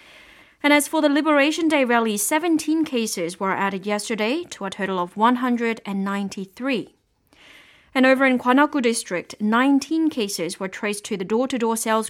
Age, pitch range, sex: 30-49, 205-285 Hz, female